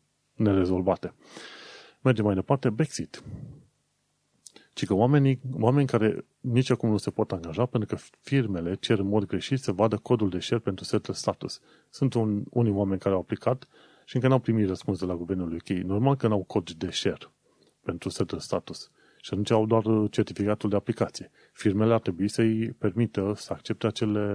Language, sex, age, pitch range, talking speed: Romanian, male, 30-49, 100-120 Hz, 180 wpm